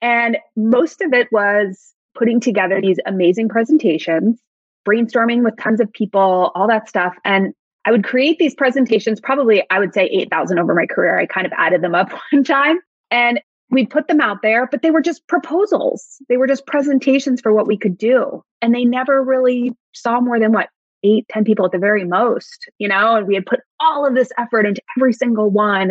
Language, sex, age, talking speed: English, female, 20-39, 205 wpm